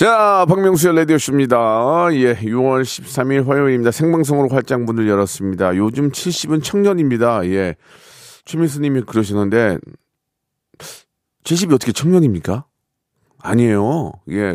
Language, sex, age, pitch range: Korean, male, 40-59, 110-165 Hz